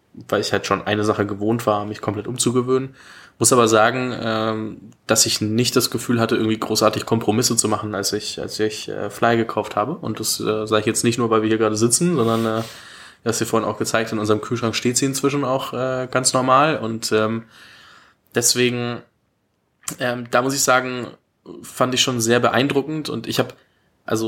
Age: 20-39